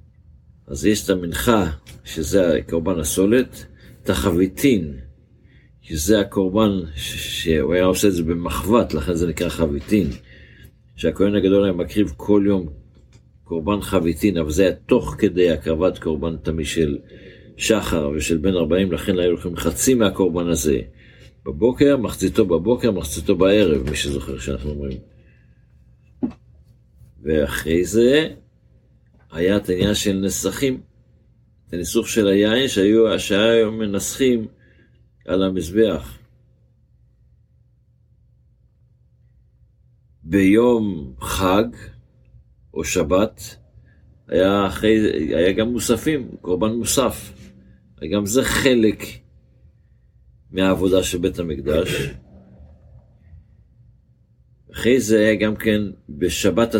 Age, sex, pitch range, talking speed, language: 60-79, male, 80-110 Hz, 100 wpm, Hebrew